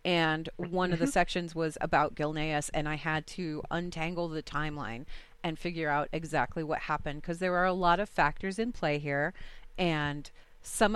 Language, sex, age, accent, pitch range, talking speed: English, female, 30-49, American, 160-200 Hz, 180 wpm